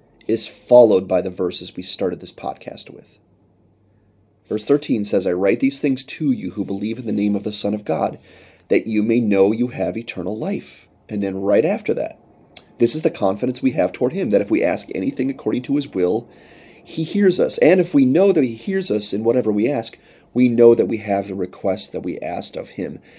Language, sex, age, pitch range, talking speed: English, male, 30-49, 100-125 Hz, 225 wpm